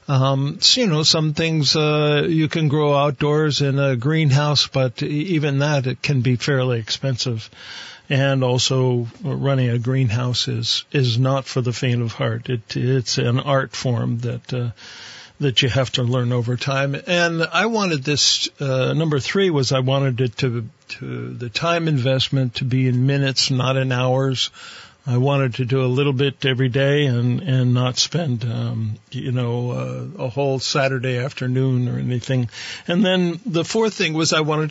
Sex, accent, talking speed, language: male, American, 180 wpm, English